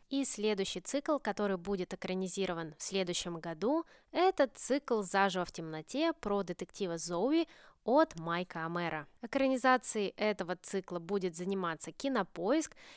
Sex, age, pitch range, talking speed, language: female, 20-39, 180-260 Hz, 120 wpm, Russian